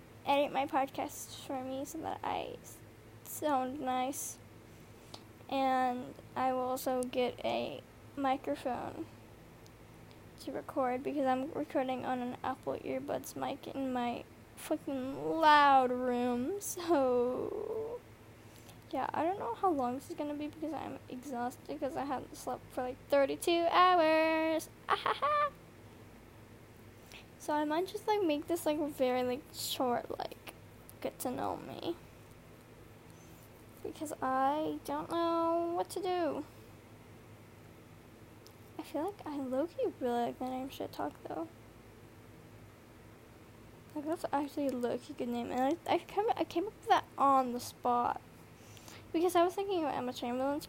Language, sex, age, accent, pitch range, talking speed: English, female, 10-29, American, 245-315 Hz, 135 wpm